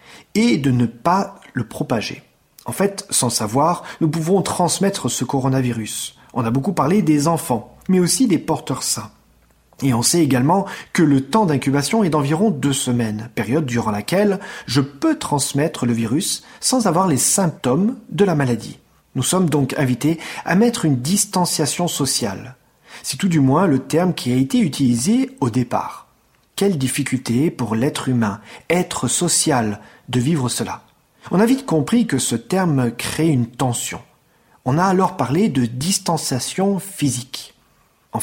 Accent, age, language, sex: French, 40-59, French, male